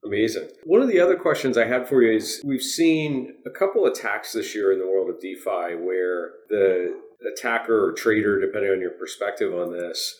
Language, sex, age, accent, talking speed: English, male, 40-59, American, 200 wpm